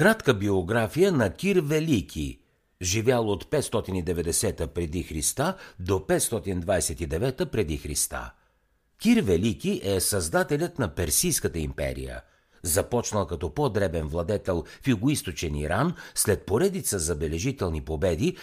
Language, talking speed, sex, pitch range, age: Bulgarian, 100 wpm, male, 85-135 Hz, 60-79